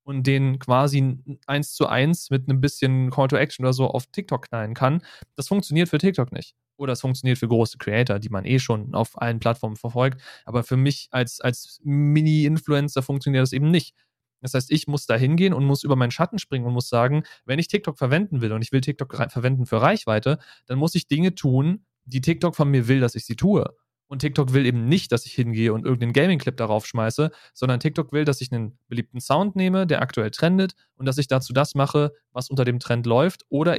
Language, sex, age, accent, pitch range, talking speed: German, male, 30-49, German, 120-140 Hz, 220 wpm